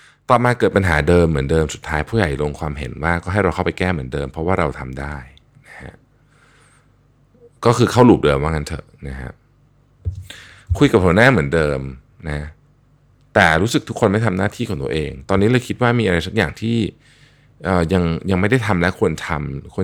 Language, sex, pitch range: Thai, male, 75-105 Hz